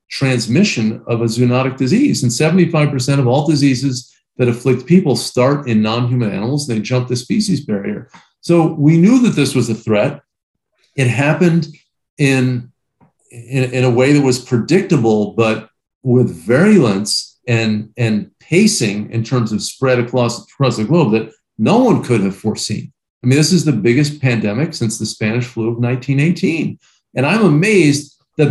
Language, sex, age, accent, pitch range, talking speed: English, male, 50-69, American, 120-160 Hz, 165 wpm